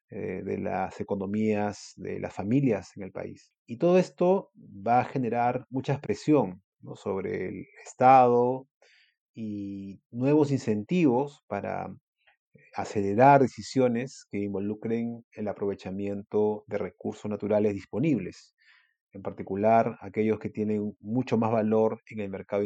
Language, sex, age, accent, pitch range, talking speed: Spanish, male, 30-49, Argentinian, 105-130 Hz, 120 wpm